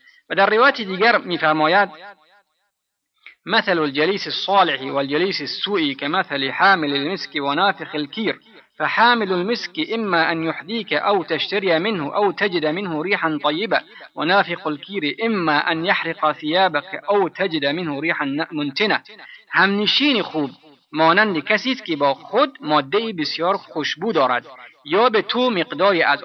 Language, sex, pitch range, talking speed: Persian, male, 155-215 Hz, 120 wpm